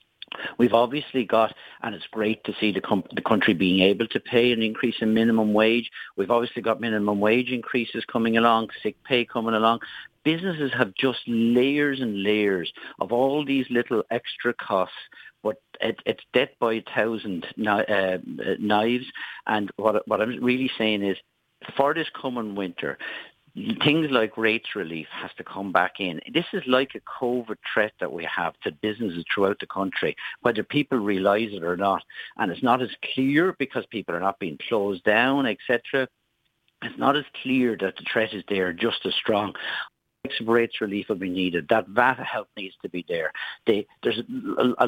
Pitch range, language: 105-130 Hz, English